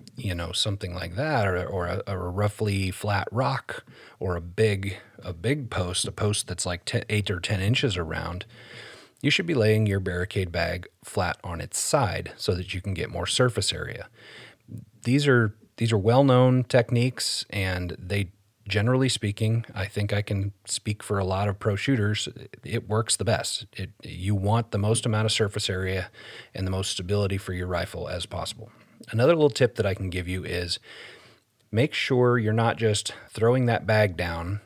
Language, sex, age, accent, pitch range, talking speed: English, male, 30-49, American, 95-115 Hz, 190 wpm